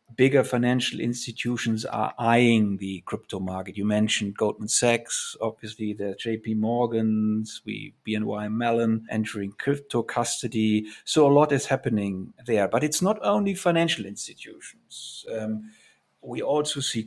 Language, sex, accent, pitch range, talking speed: English, male, German, 110-130 Hz, 130 wpm